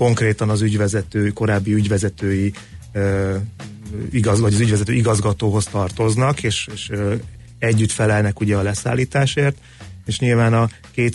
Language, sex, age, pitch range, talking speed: Hungarian, male, 30-49, 100-110 Hz, 125 wpm